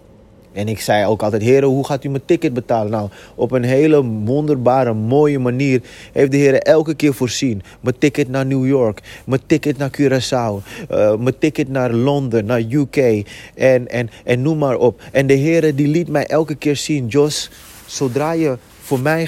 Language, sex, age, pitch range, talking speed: Dutch, male, 30-49, 105-145 Hz, 185 wpm